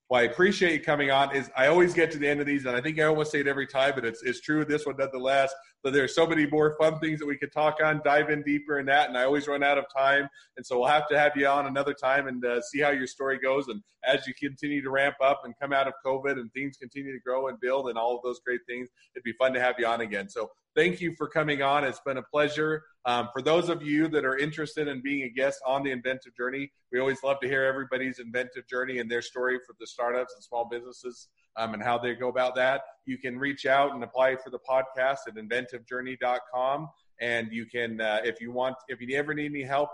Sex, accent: male, American